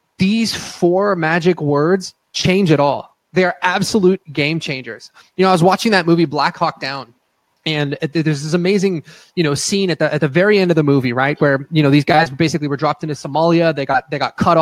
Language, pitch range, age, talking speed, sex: English, 155-190 Hz, 20-39, 220 wpm, male